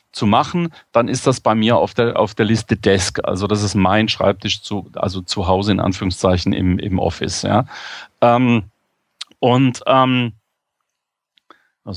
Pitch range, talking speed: 110-155 Hz, 160 wpm